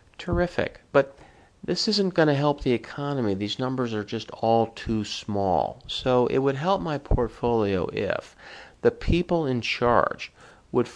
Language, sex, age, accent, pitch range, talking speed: English, male, 50-69, American, 95-130 Hz, 155 wpm